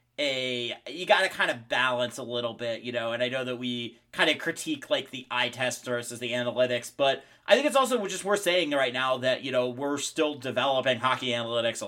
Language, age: English, 30-49